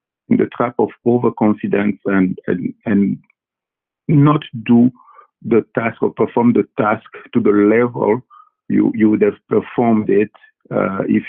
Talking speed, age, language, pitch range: 140 wpm, 50-69, English, 110-145 Hz